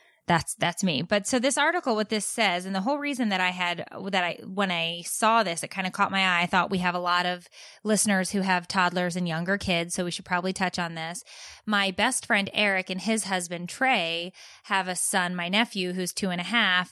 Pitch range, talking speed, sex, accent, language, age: 180-210 Hz, 240 wpm, female, American, English, 20-39